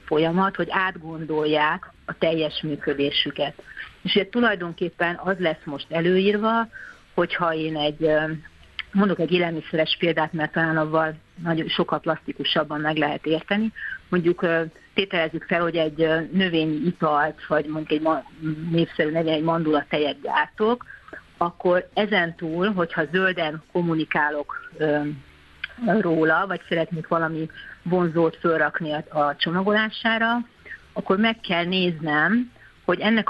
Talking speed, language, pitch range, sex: 115 wpm, Hungarian, 155-190 Hz, female